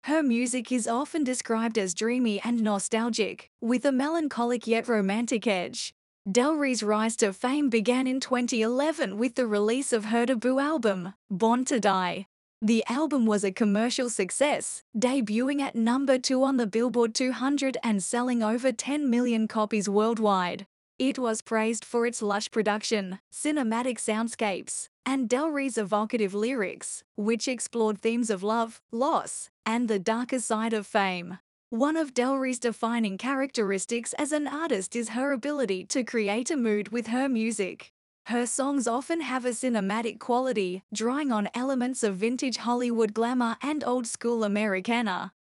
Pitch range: 220-260 Hz